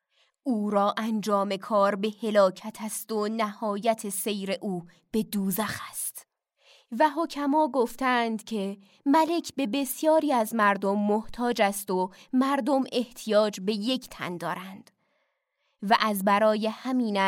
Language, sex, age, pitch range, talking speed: Persian, female, 20-39, 200-260 Hz, 125 wpm